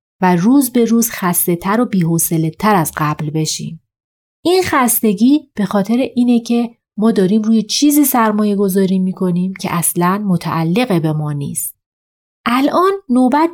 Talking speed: 145 wpm